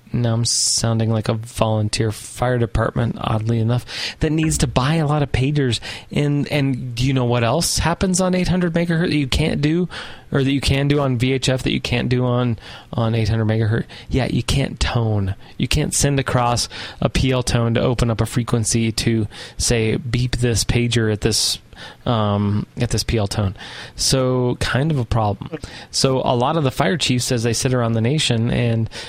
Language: English